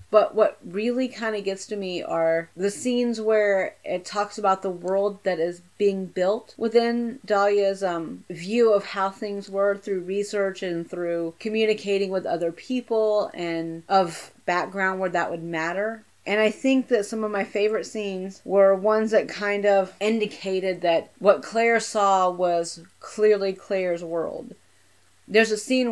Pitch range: 180-215 Hz